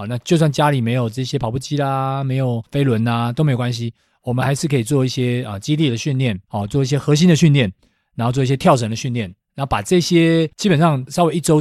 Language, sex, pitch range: Chinese, male, 115-155 Hz